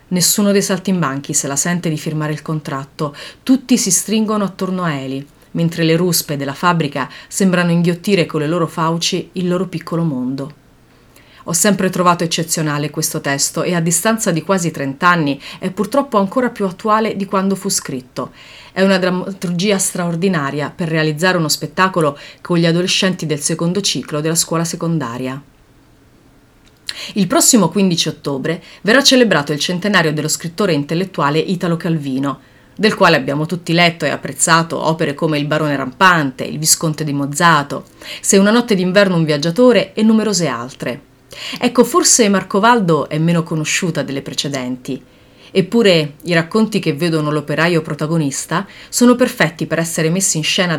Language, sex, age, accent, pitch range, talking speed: Italian, female, 30-49, native, 150-190 Hz, 150 wpm